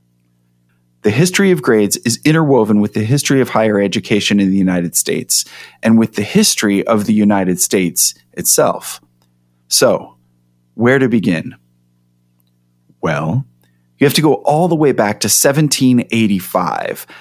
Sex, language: male, English